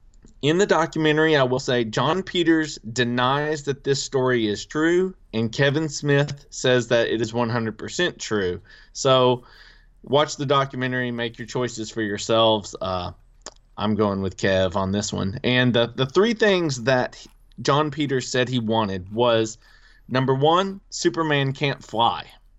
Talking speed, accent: 155 wpm, American